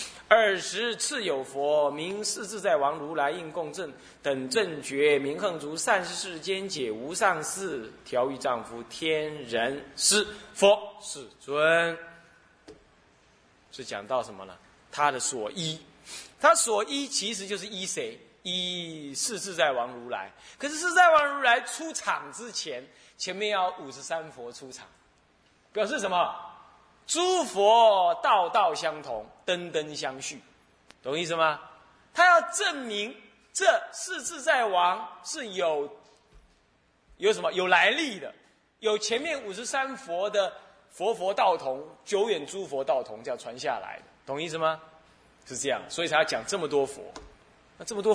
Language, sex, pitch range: Chinese, male, 150-240 Hz